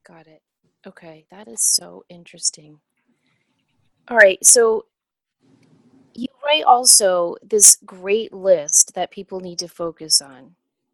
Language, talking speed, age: English, 120 wpm, 30-49